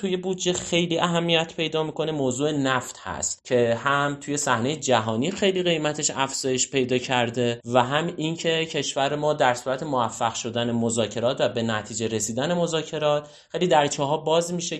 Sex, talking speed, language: male, 160 wpm, Persian